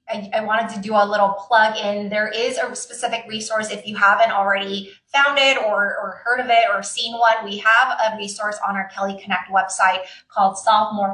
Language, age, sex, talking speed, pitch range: English, 20-39, female, 205 wpm, 195-225 Hz